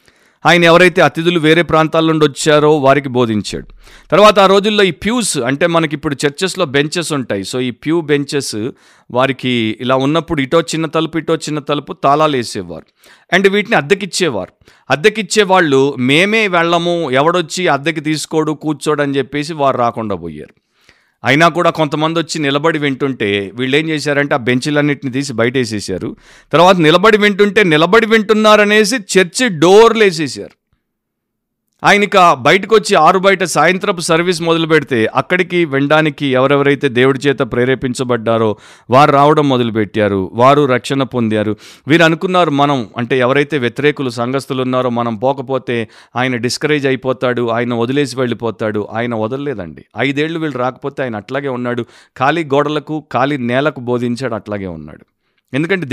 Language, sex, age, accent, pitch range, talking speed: Telugu, male, 50-69, native, 125-165 Hz, 130 wpm